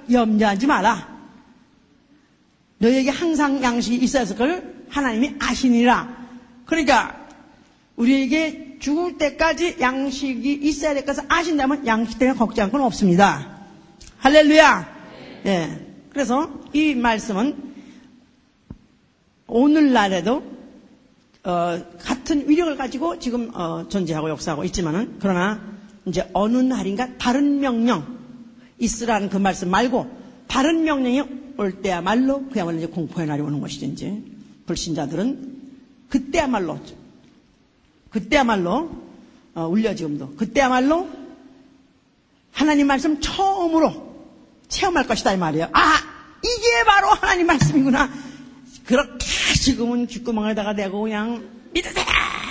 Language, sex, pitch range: Korean, female, 220-285 Hz